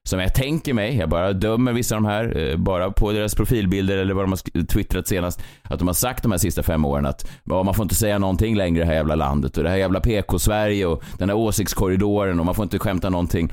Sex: male